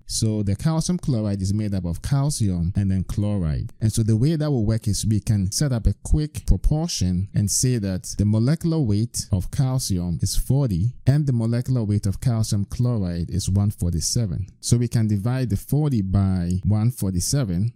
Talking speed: 185 wpm